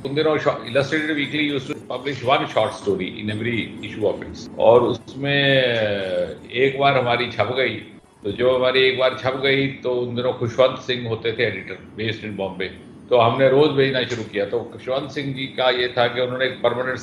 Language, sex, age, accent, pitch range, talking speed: Hindi, male, 50-69, native, 110-130 Hz, 185 wpm